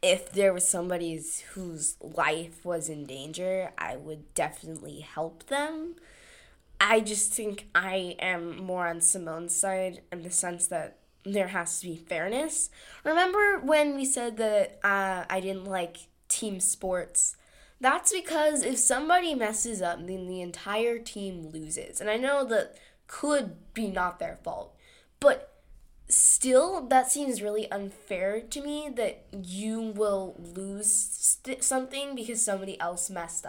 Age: 10-29